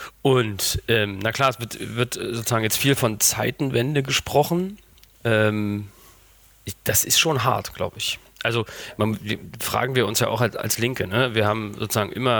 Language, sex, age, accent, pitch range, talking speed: German, male, 30-49, German, 110-120 Hz, 180 wpm